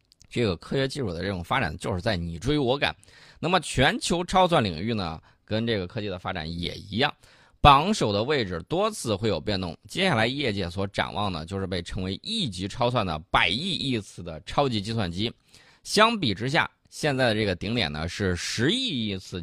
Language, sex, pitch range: Chinese, male, 95-135 Hz